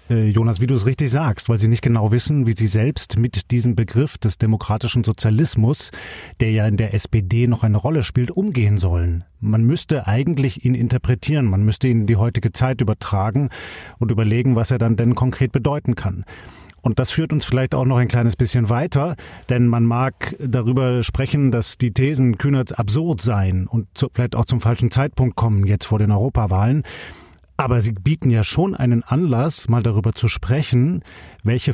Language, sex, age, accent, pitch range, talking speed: German, male, 30-49, German, 110-130 Hz, 185 wpm